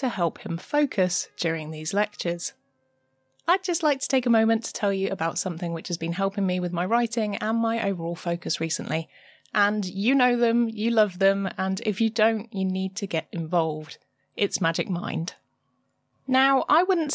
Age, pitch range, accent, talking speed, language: 20-39, 170-225 Hz, British, 185 wpm, English